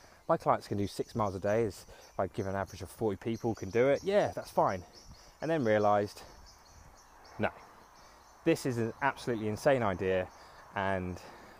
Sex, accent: male, British